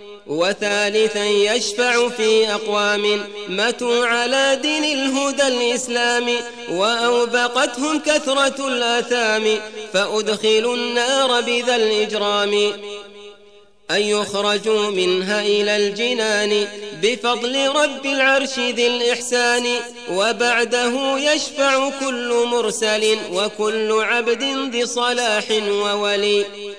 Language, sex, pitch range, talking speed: Arabic, male, 210-245 Hz, 80 wpm